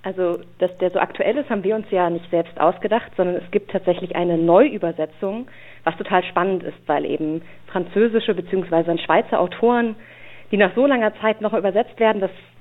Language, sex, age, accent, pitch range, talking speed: German, female, 30-49, German, 175-215 Hz, 180 wpm